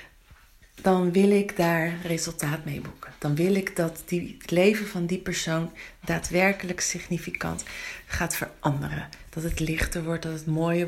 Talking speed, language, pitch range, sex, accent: 150 wpm, Dutch, 165-205 Hz, female, Dutch